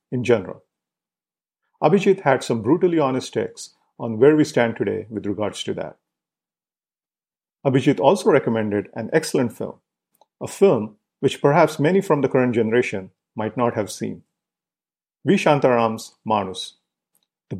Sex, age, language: male, 50-69, English